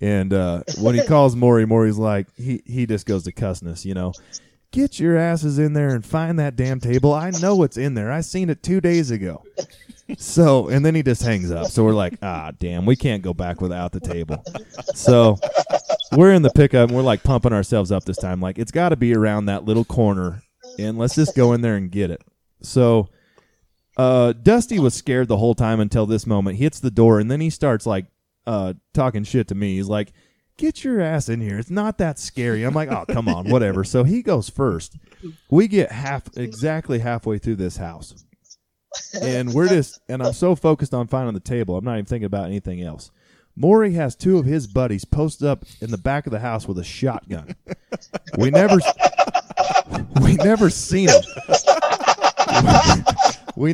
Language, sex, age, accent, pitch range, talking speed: English, male, 20-39, American, 105-155 Hz, 205 wpm